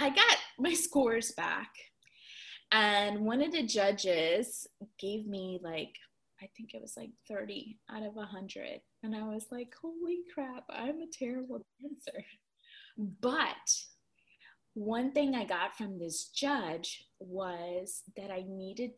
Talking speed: 140 wpm